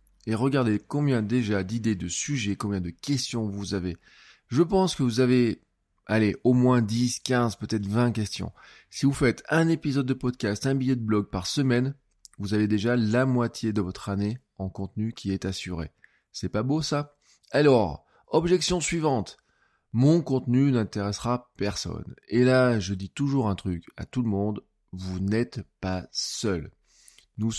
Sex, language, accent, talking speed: male, French, French, 170 wpm